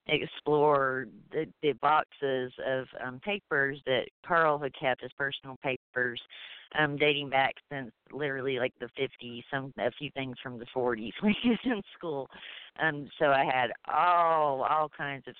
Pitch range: 125-150 Hz